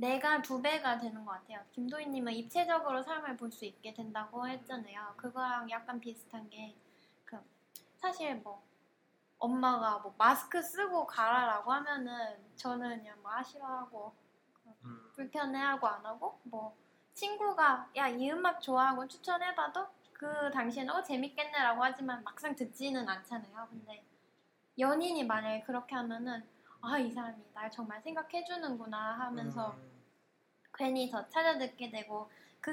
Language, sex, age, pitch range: Korean, female, 10-29, 230-285 Hz